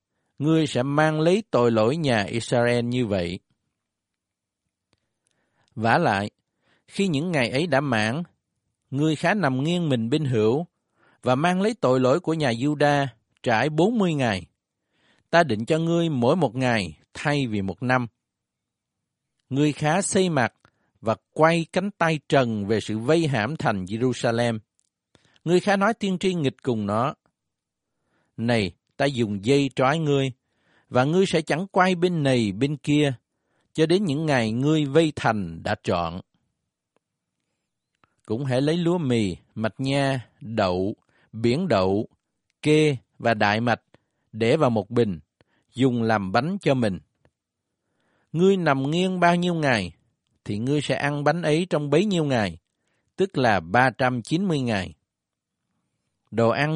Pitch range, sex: 115-155 Hz, male